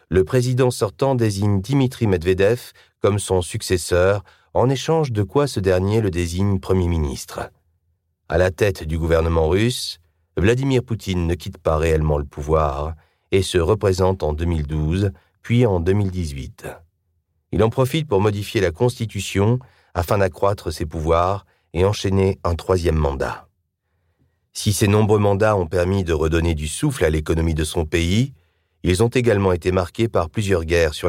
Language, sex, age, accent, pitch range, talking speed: French, male, 40-59, French, 85-105 Hz, 155 wpm